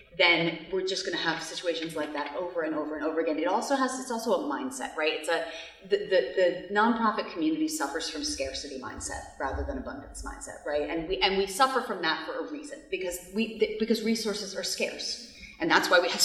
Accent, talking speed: American, 220 wpm